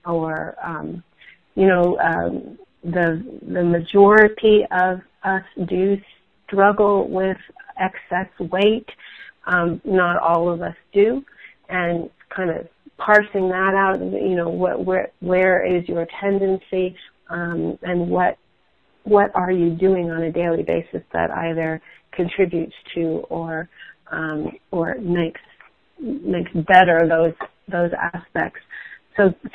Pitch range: 170-200 Hz